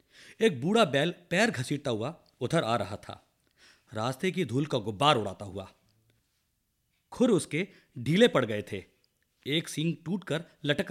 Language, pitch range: Marathi, 115-175 Hz